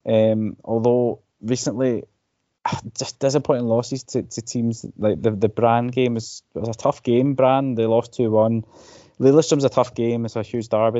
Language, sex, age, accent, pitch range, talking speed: English, male, 20-39, British, 100-120 Hz, 170 wpm